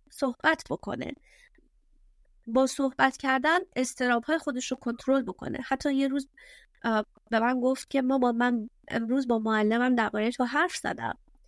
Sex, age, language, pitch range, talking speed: female, 30-49, Persian, 220-275 Hz, 140 wpm